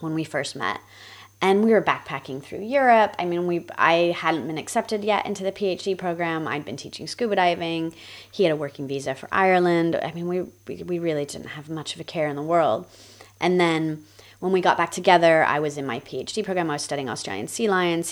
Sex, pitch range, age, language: female, 140-180 Hz, 30-49, English